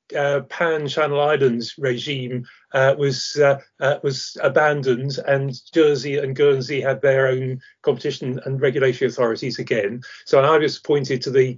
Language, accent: English, British